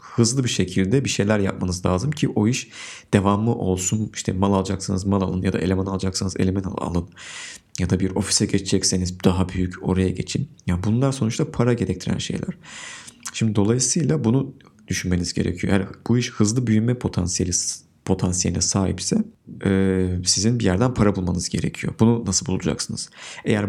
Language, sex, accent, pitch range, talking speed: Turkish, male, native, 95-120 Hz, 160 wpm